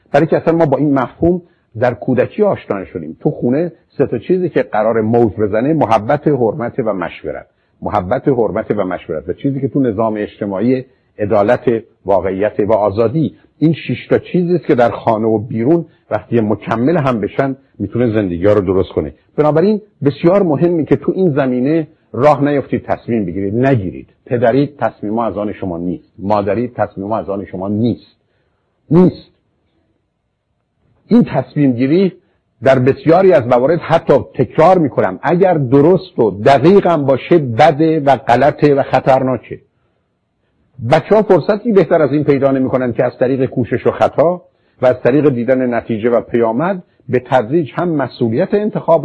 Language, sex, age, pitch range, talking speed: Persian, male, 50-69, 115-165 Hz, 155 wpm